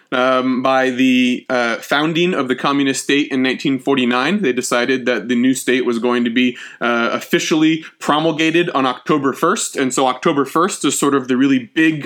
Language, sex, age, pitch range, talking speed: English, male, 30-49, 120-160 Hz, 185 wpm